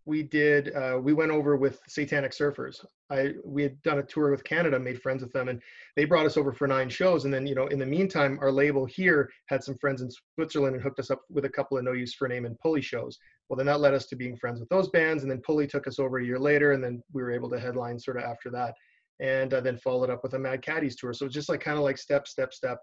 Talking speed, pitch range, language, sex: 290 wpm, 130-150 Hz, English, male